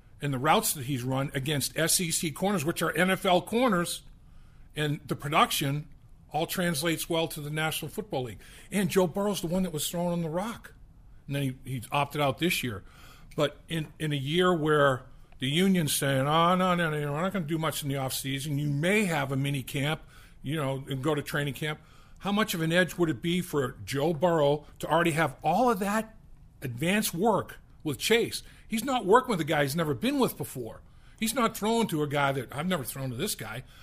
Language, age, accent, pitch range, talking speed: English, 50-69, American, 135-175 Hz, 220 wpm